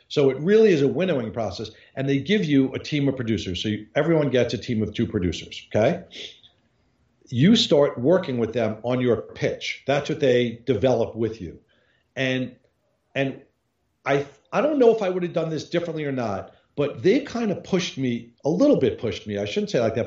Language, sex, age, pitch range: English, male, 50-69, 120-165 Hz